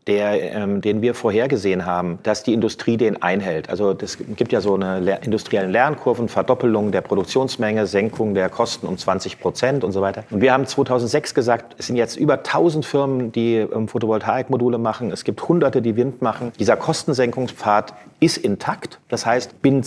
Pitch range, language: 105-130 Hz, German